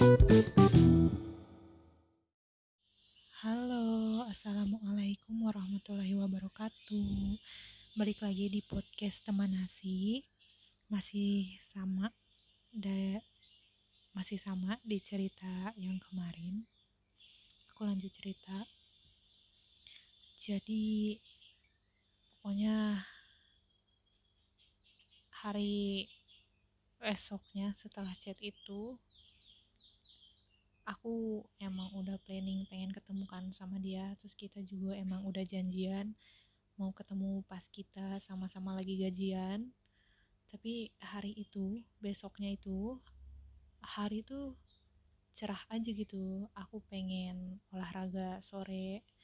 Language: Indonesian